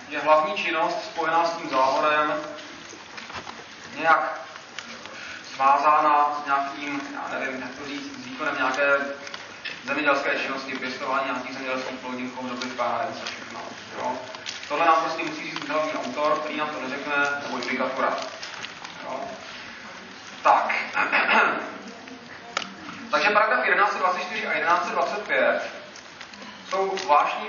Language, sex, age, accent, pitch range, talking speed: Czech, male, 30-49, native, 140-180 Hz, 105 wpm